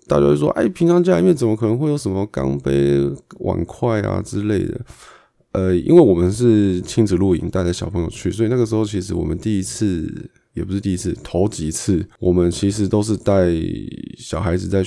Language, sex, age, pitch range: Chinese, male, 20-39, 85-105 Hz